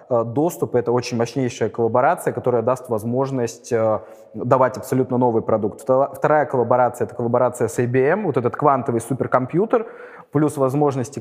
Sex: male